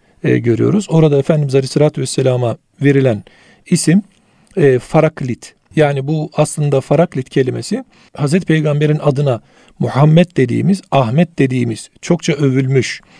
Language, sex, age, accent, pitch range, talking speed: Turkish, male, 50-69, native, 135-170 Hz, 110 wpm